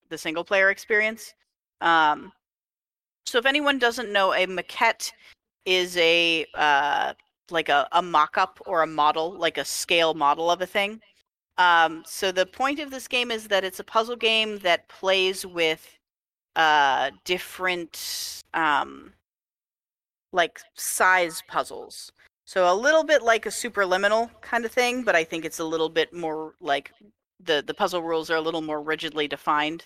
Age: 40-59